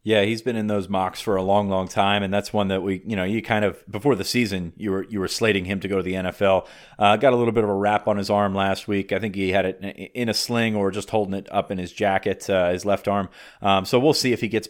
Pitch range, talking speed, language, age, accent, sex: 100-110 Hz, 305 wpm, English, 30-49, American, male